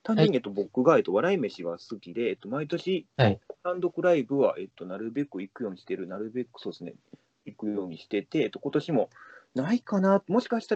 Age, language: 30-49, Japanese